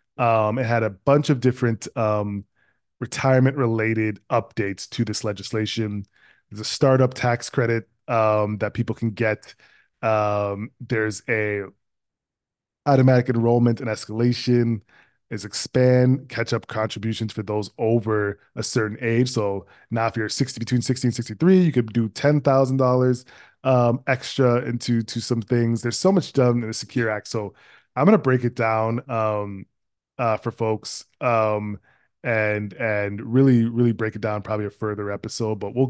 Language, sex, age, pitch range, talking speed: English, male, 20-39, 105-125 Hz, 155 wpm